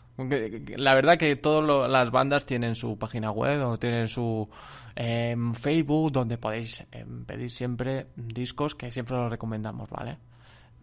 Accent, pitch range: Spanish, 115-140 Hz